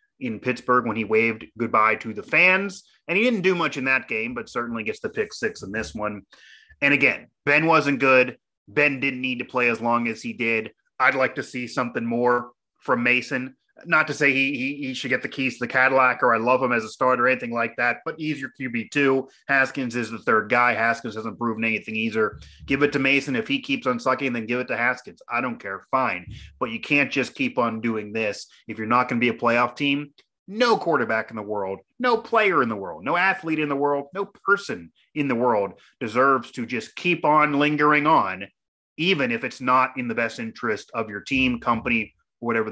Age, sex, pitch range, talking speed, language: 30-49, male, 115-155 Hz, 230 wpm, English